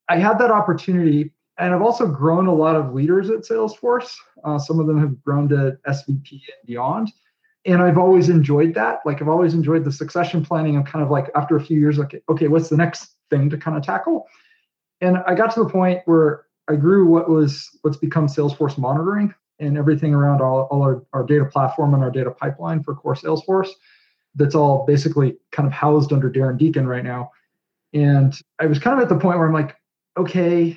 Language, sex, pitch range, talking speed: English, male, 145-185 Hz, 210 wpm